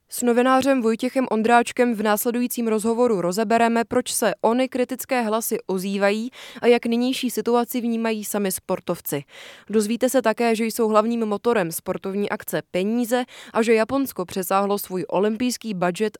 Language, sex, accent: Czech, female, native